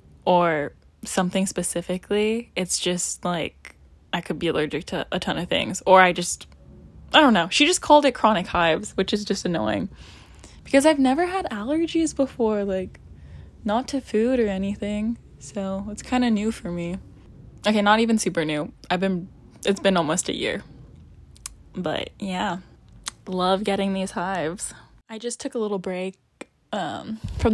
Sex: female